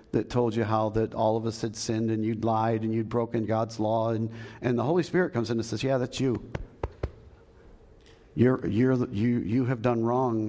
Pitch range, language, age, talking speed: 115-155 Hz, English, 50-69, 210 wpm